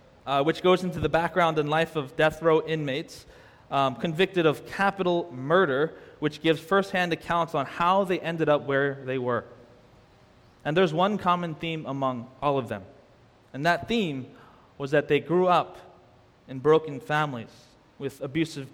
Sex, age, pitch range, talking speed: male, 20-39, 130-165 Hz, 165 wpm